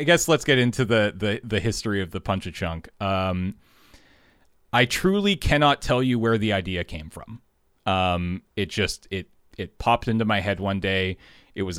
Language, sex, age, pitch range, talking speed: English, male, 30-49, 95-110 Hz, 195 wpm